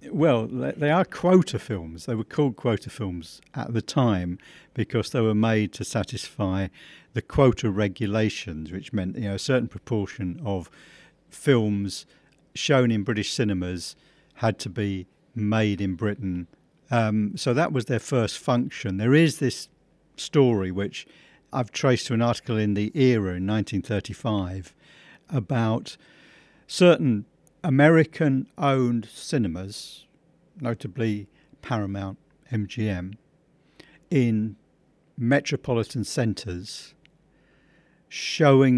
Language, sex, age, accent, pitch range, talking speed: English, male, 50-69, British, 105-140 Hz, 115 wpm